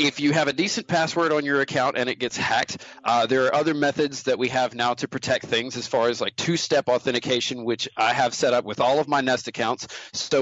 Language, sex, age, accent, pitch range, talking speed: English, male, 40-59, American, 130-165 Hz, 250 wpm